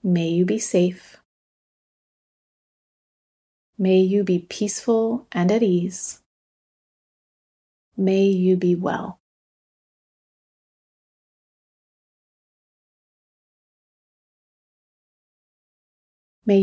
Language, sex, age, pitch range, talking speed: English, female, 30-49, 175-205 Hz, 60 wpm